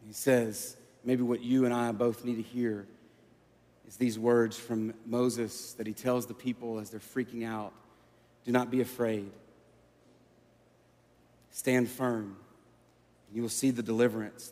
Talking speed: 155 wpm